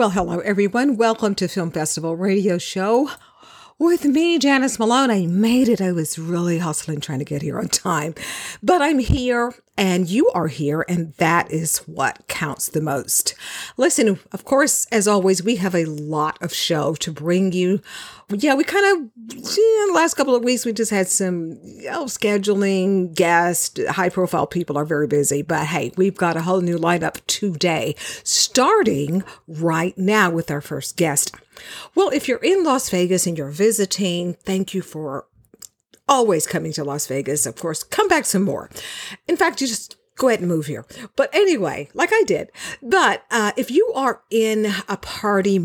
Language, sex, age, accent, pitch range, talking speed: English, female, 50-69, American, 170-250 Hz, 180 wpm